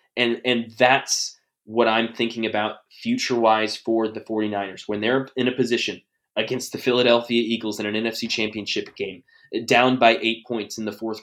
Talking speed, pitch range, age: 170 wpm, 105-120 Hz, 20-39